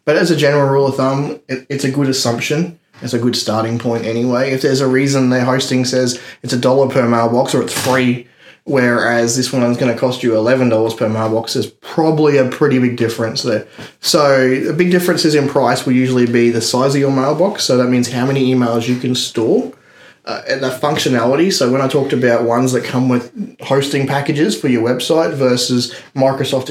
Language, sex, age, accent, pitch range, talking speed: English, male, 20-39, Australian, 125-140 Hz, 205 wpm